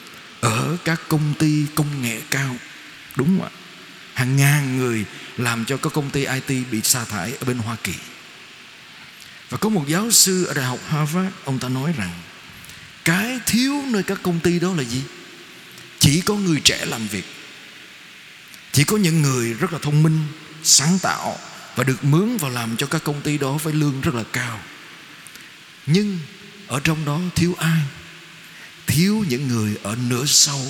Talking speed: 180 wpm